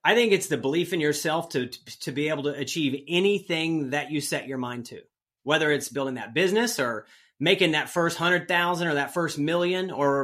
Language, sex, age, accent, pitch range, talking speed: English, male, 30-49, American, 135-165 Hz, 215 wpm